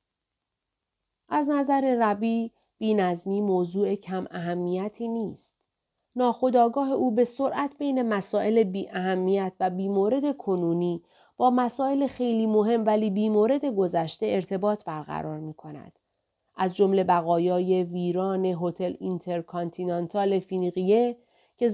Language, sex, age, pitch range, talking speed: Persian, female, 30-49, 190-235 Hz, 110 wpm